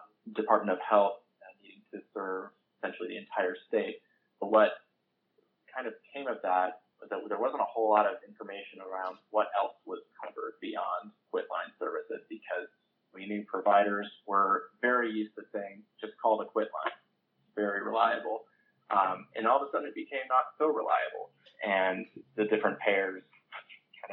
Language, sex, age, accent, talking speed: English, male, 30-49, American, 165 wpm